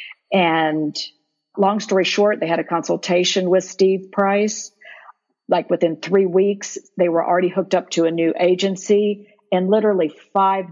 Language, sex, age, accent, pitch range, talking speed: English, female, 50-69, American, 170-205 Hz, 150 wpm